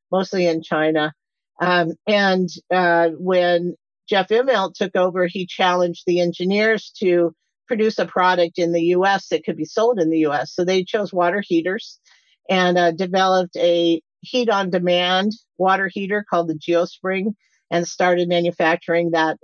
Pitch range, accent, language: 170-195 Hz, American, English